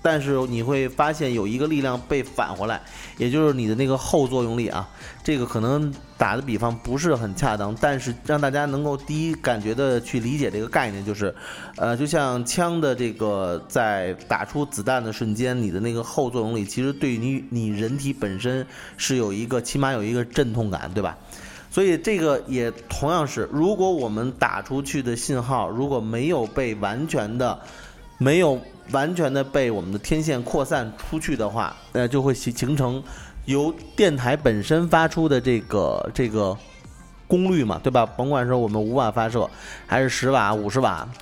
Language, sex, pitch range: Chinese, male, 110-145 Hz